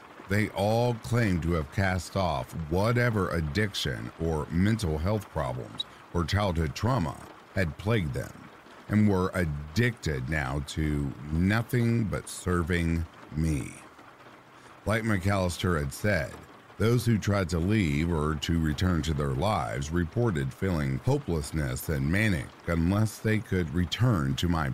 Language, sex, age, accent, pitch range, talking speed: English, male, 50-69, American, 75-100 Hz, 130 wpm